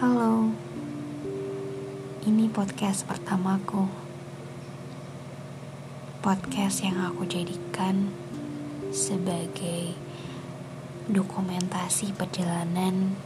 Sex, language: female, Indonesian